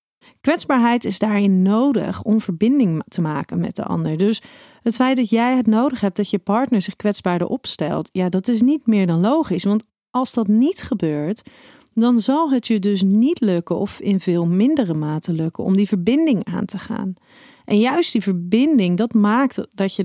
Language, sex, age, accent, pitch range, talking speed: Dutch, female, 40-59, Dutch, 185-250 Hz, 190 wpm